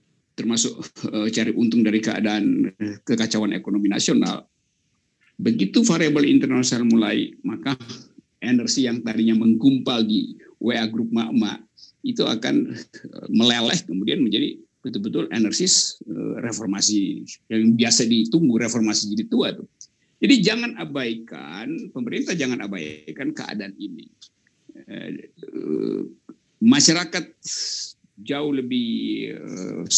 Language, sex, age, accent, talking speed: Indonesian, male, 50-69, native, 100 wpm